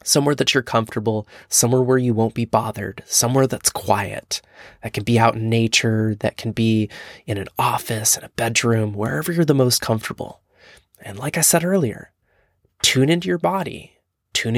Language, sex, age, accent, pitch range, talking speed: English, male, 20-39, American, 110-135 Hz, 175 wpm